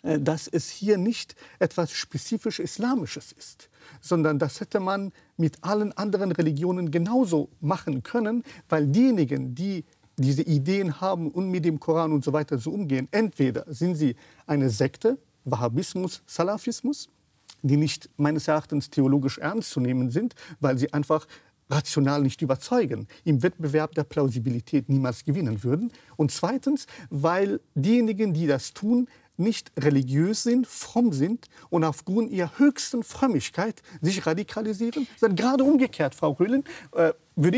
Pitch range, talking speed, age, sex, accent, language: 150-215 Hz, 140 wpm, 50-69, male, German, German